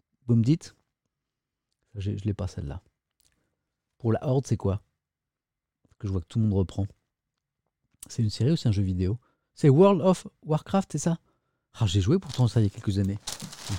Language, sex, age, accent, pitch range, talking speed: French, male, 50-69, French, 110-165 Hz, 200 wpm